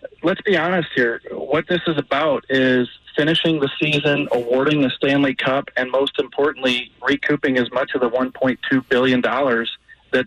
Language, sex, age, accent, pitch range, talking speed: English, male, 30-49, American, 125-145 Hz, 160 wpm